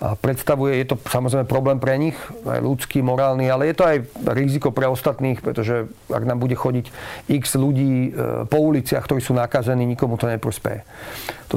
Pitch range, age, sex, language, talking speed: 125-140 Hz, 40-59, male, Slovak, 175 wpm